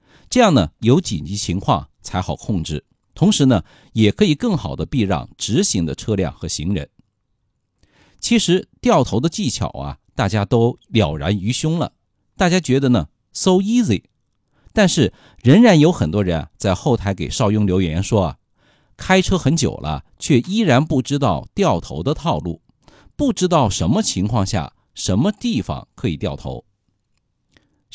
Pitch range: 95-155 Hz